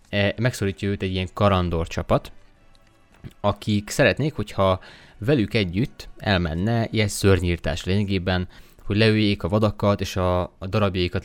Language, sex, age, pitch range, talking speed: Hungarian, male, 20-39, 90-110 Hz, 115 wpm